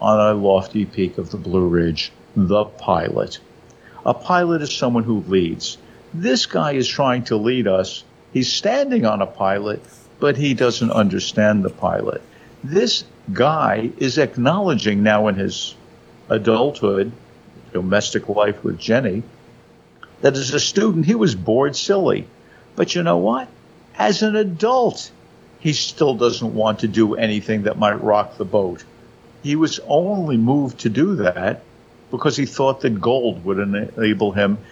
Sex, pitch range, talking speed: male, 105-140 Hz, 150 wpm